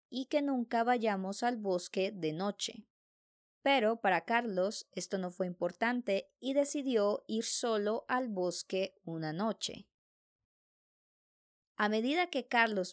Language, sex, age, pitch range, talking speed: English, male, 20-39, 190-240 Hz, 125 wpm